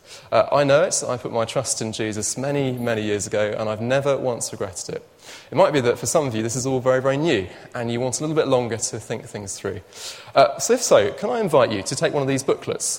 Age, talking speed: 30-49, 275 wpm